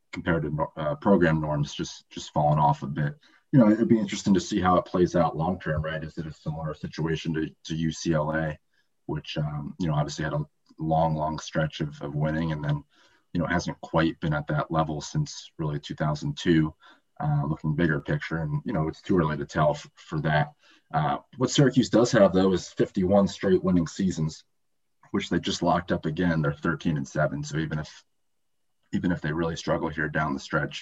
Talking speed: 205 wpm